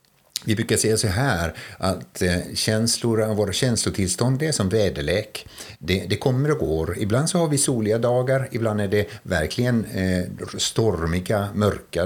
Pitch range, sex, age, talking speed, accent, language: 90-120 Hz, male, 60-79, 145 wpm, native, Swedish